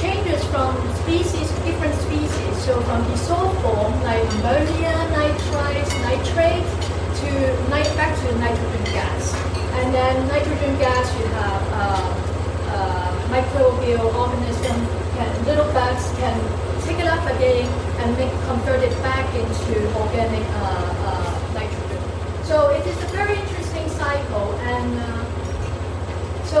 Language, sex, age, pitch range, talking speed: English, female, 30-49, 85-95 Hz, 130 wpm